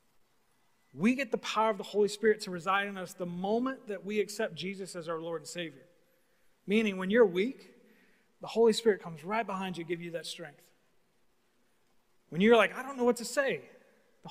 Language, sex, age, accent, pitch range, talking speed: English, male, 30-49, American, 175-225 Hz, 200 wpm